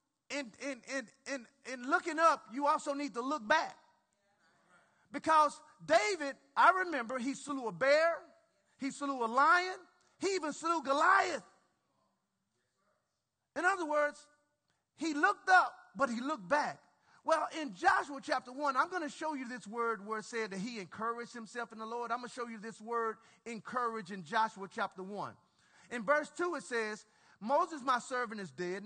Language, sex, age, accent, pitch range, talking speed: English, male, 40-59, American, 215-295 Hz, 165 wpm